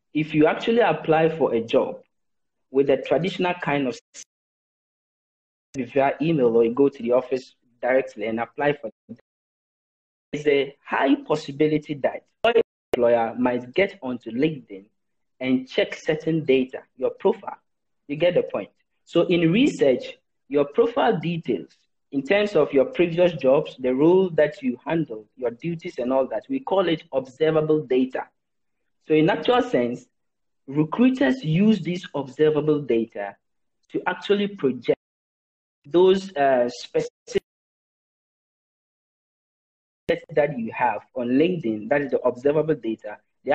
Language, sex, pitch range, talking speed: English, male, 130-185 Hz, 135 wpm